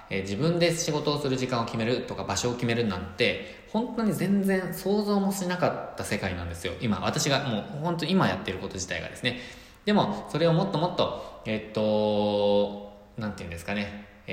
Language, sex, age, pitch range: Japanese, male, 20-39, 100-150 Hz